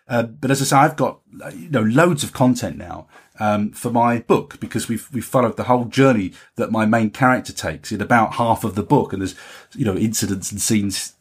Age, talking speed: 30-49, 225 wpm